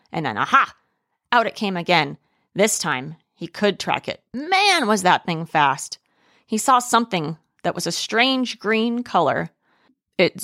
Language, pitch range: English, 160-235 Hz